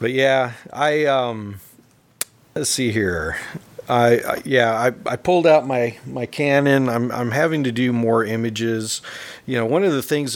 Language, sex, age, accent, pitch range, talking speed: English, male, 50-69, American, 115-150 Hz, 175 wpm